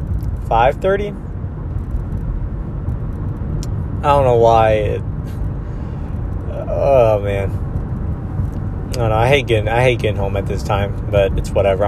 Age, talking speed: 20-39, 120 wpm